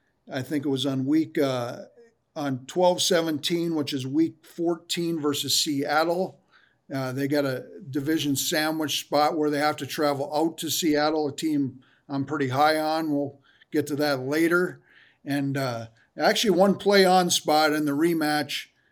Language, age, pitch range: English, 50-69, 145-175 Hz